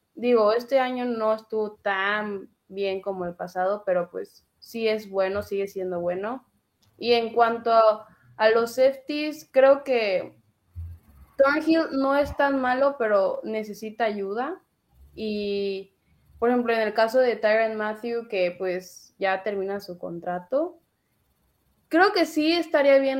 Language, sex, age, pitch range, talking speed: Spanish, female, 20-39, 195-240 Hz, 140 wpm